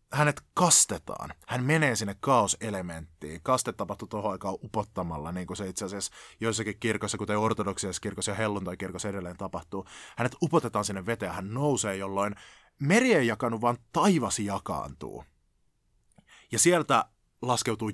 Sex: male